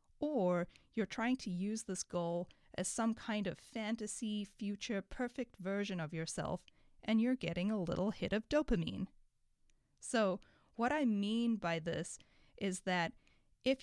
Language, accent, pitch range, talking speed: English, American, 175-215 Hz, 150 wpm